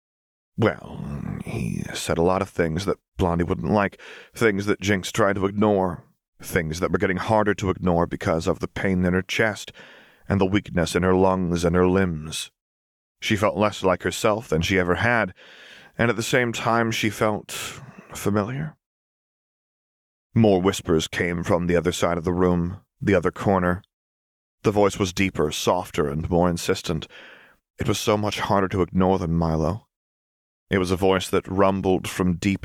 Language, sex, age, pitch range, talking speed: English, male, 30-49, 85-100 Hz, 175 wpm